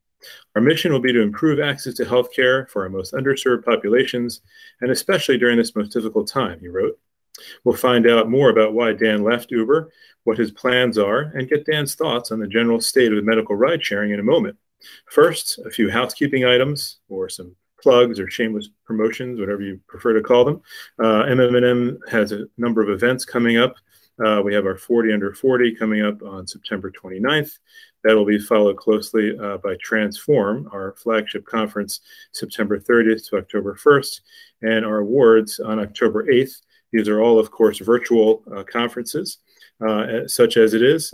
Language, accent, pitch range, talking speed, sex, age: English, American, 105-125 Hz, 185 wpm, male, 30-49